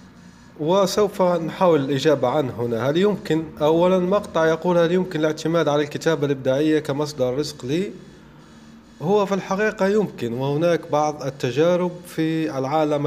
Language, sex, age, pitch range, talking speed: Arabic, male, 20-39, 135-170 Hz, 130 wpm